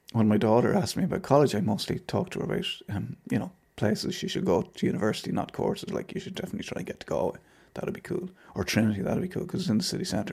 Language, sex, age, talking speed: English, male, 30-49, 275 wpm